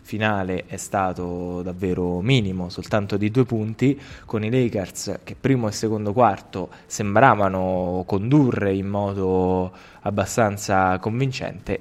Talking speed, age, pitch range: 115 wpm, 20-39, 95-115 Hz